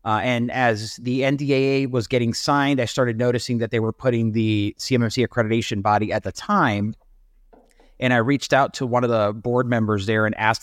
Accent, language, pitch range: American, English, 110-130 Hz